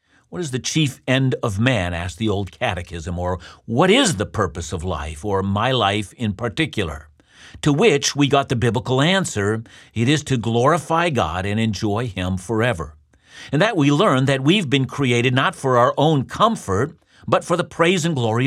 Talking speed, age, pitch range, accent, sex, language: 190 wpm, 50-69, 100-135 Hz, American, male, English